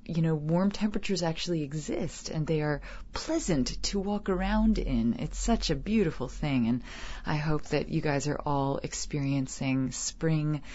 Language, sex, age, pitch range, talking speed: English, female, 30-49, 140-190 Hz, 160 wpm